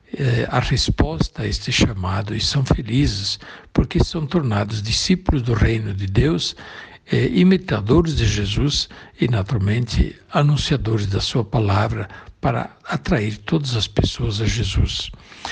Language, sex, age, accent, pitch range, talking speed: Portuguese, male, 60-79, Brazilian, 105-155 Hz, 130 wpm